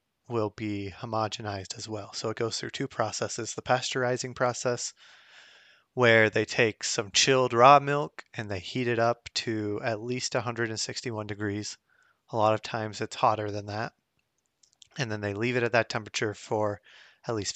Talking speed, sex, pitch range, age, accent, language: 170 wpm, male, 105-125 Hz, 20-39, American, English